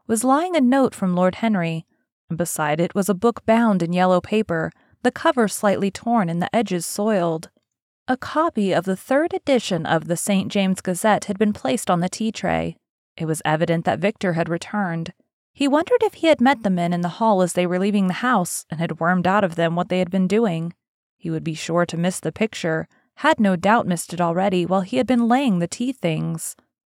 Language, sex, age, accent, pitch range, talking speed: English, female, 30-49, American, 175-225 Hz, 220 wpm